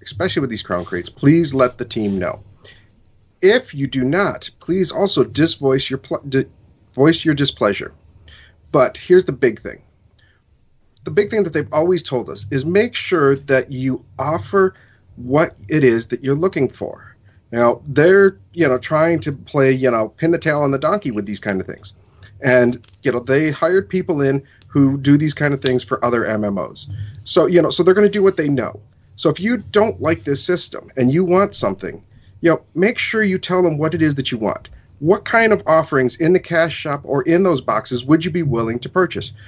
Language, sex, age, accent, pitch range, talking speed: English, male, 40-59, American, 115-165 Hz, 210 wpm